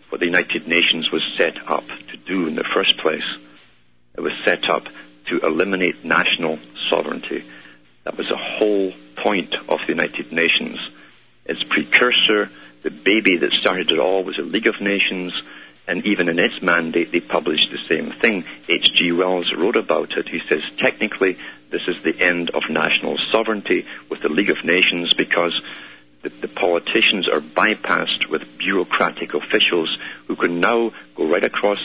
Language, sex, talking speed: English, male, 165 wpm